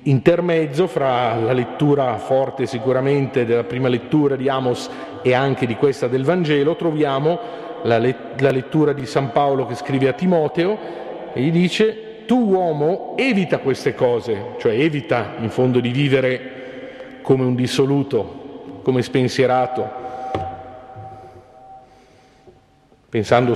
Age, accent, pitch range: 50-69, native, 125-150 Hz